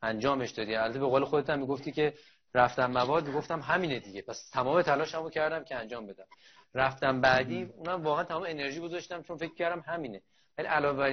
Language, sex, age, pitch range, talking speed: Persian, male, 30-49, 130-165 Hz, 190 wpm